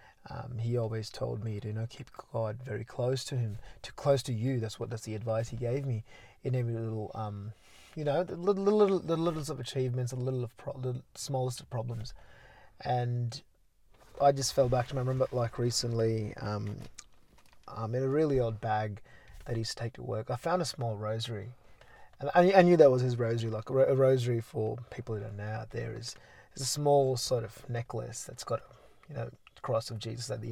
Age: 20-39